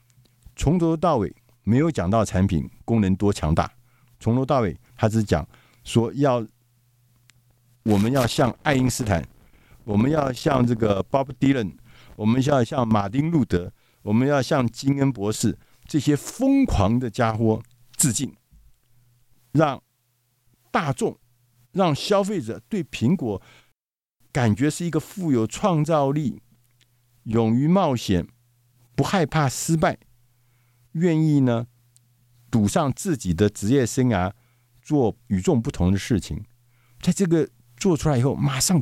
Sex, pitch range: male, 115-140 Hz